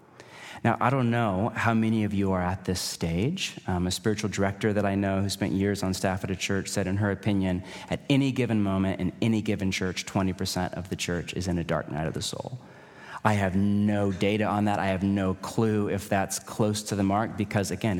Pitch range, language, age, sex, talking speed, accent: 95-125 Hz, English, 30-49, male, 230 wpm, American